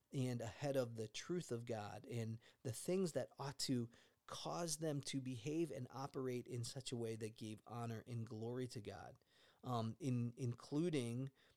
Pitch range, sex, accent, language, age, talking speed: 115-140 Hz, male, American, English, 40-59, 170 wpm